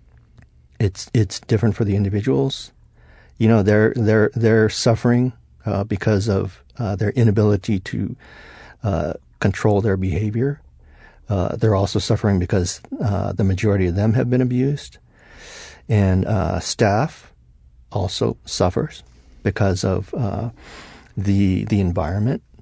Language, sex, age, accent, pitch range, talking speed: English, male, 50-69, American, 85-110 Hz, 125 wpm